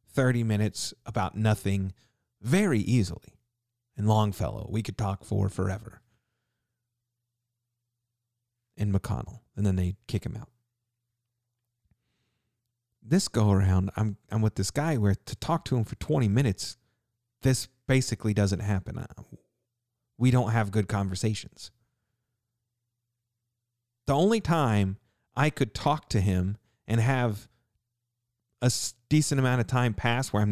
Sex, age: male, 40-59